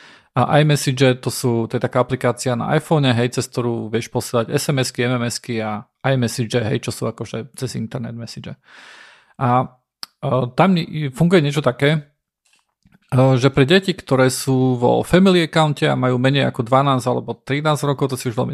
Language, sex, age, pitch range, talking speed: Slovak, male, 40-59, 125-145 Hz, 180 wpm